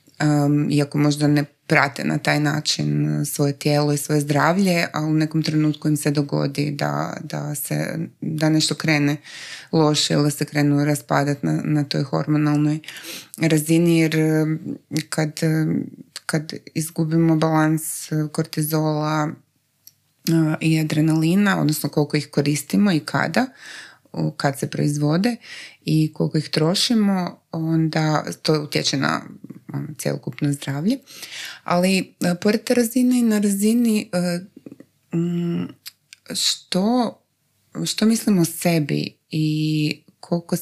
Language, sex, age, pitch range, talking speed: Croatian, female, 20-39, 140-160 Hz, 115 wpm